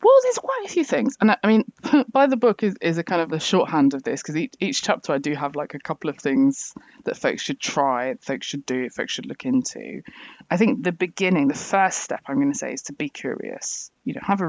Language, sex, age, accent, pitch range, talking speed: English, female, 20-39, British, 145-230 Hz, 275 wpm